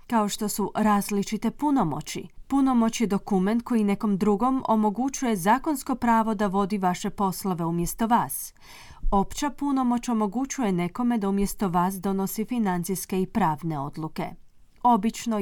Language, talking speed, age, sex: Croatian, 130 wpm, 30-49, female